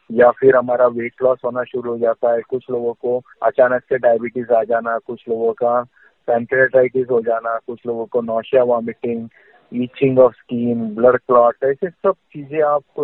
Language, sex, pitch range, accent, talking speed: Hindi, male, 125-150 Hz, native, 175 wpm